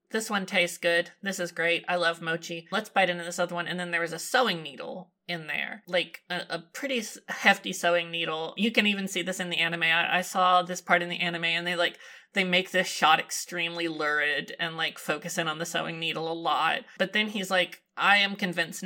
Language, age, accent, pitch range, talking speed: English, 30-49, American, 170-190 Hz, 235 wpm